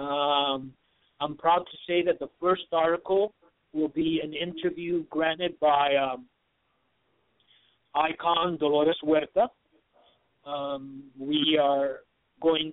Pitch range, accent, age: 150-170 Hz, American, 50-69